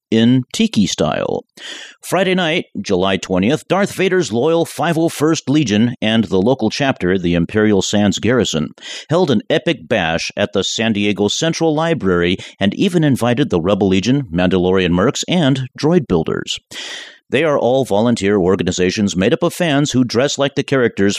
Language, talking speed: English, 155 wpm